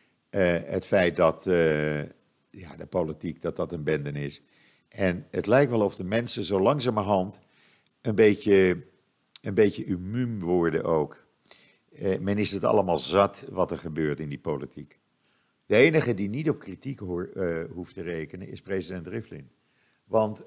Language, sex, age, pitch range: Dutch, male, 50-69, 90-110 Hz